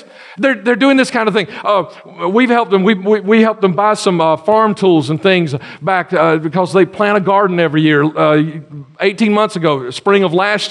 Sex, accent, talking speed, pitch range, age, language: male, American, 220 wpm, 185-235 Hz, 50-69, English